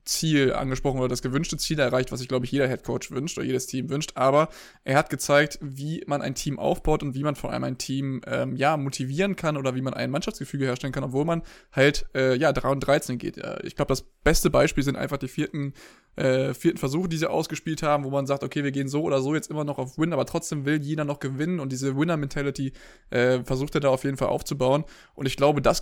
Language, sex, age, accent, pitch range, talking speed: German, male, 20-39, German, 135-150 Hz, 245 wpm